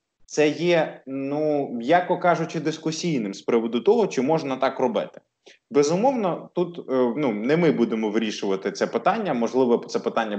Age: 20-39